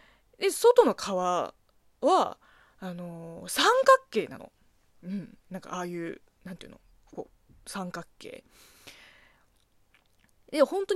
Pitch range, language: 185-280 Hz, Japanese